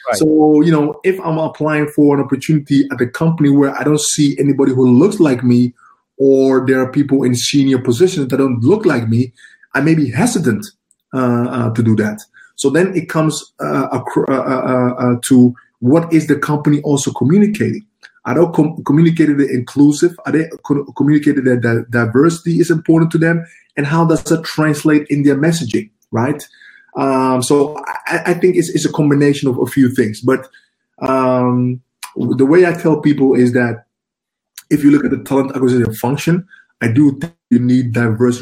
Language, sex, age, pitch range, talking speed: English, male, 20-39, 125-155 Hz, 185 wpm